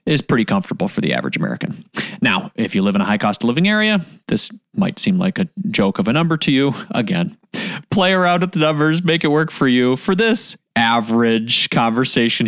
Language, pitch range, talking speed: English, 145-205 Hz, 210 wpm